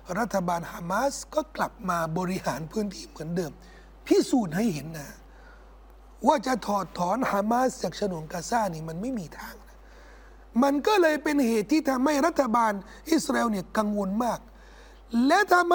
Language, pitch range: Thai, 215-300 Hz